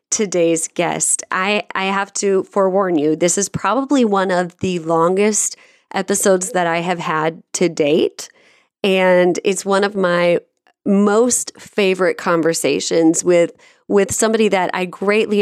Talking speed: 140 wpm